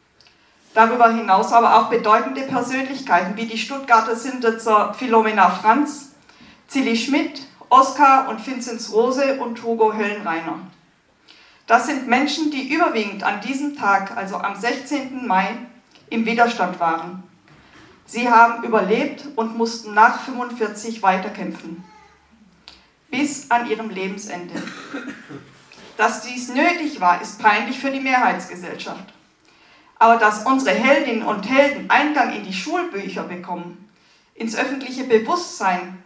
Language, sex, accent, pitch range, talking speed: German, female, German, 210-265 Hz, 120 wpm